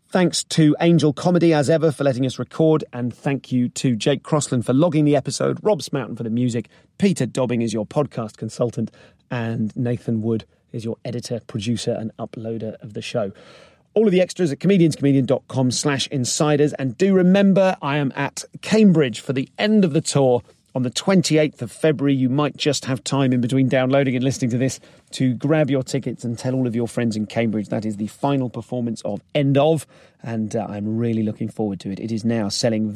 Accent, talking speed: British, 205 wpm